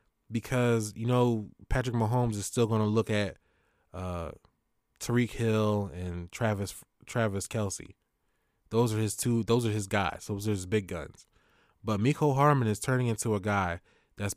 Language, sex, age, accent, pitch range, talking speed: English, male, 20-39, American, 100-120 Hz, 165 wpm